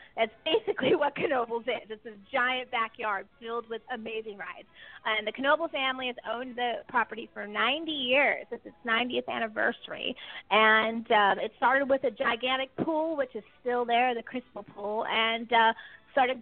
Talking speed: 170 wpm